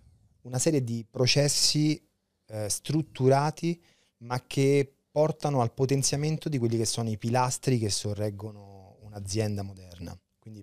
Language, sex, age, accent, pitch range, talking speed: Italian, male, 30-49, native, 105-130 Hz, 125 wpm